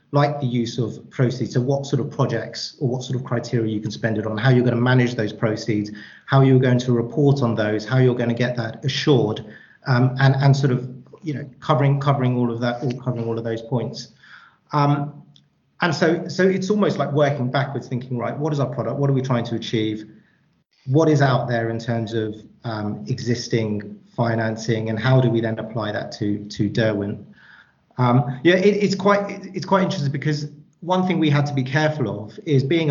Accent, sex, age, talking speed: British, male, 40-59, 220 wpm